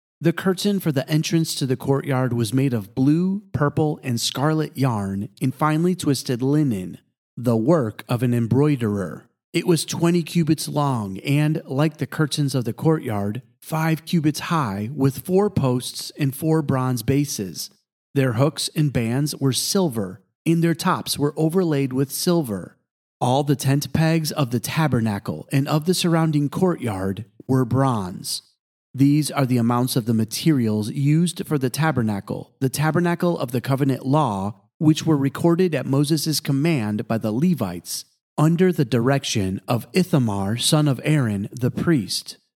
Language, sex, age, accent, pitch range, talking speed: English, male, 40-59, American, 125-160 Hz, 155 wpm